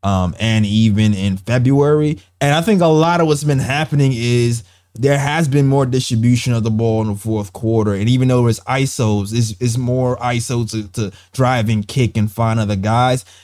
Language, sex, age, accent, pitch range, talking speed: English, male, 20-39, American, 105-130 Hz, 200 wpm